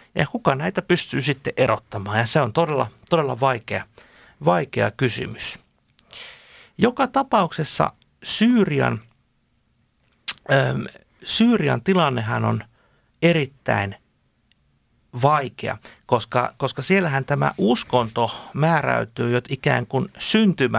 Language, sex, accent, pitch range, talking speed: Finnish, male, native, 125-185 Hz, 90 wpm